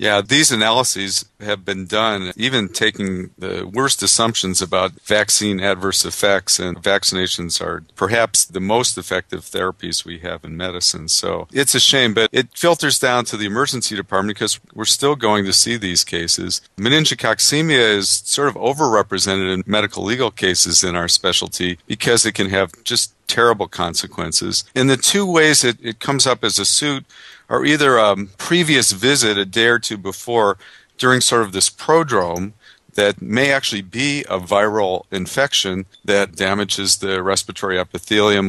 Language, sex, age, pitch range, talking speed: English, male, 50-69, 95-120 Hz, 160 wpm